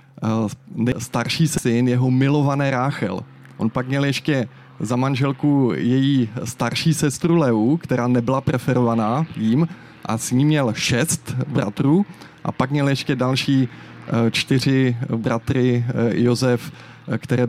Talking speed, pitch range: 115 wpm, 115-135 Hz